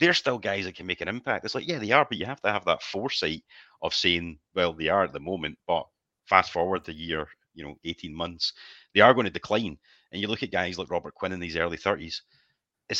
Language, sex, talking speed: English, male, 255 wpm